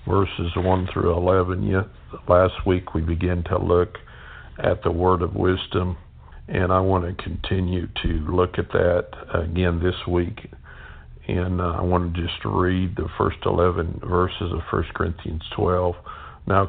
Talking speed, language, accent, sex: 160 wpm, English, American, male